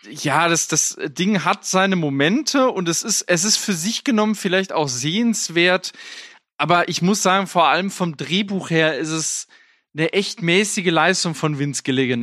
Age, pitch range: 20-39, 155-205 Hz